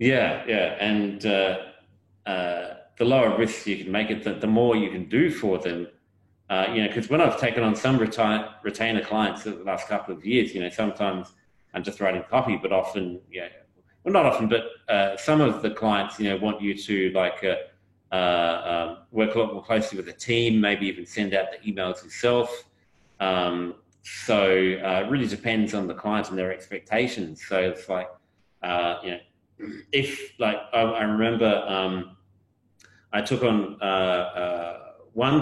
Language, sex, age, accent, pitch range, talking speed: English, male, 30-49, Australian, 95-110 Hz, 185 wpm